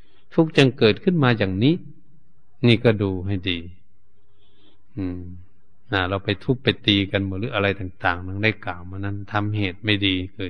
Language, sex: Thai, male